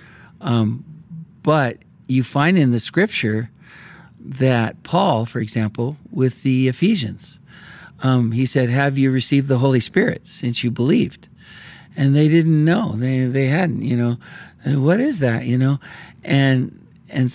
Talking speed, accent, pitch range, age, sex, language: 150 wpm, American, 130-160 Hz, 50-69, male, English